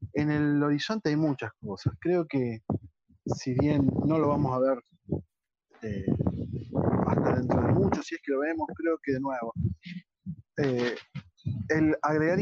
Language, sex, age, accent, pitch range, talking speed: Spanish, male, 20-39, Argentinian, 120-140 Hz, 155 wpm